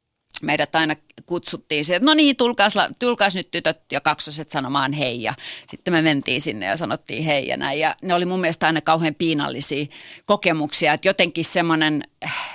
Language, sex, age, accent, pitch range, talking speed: Finnish, female, 30-49, native, 150-185 Hz, 175 wpm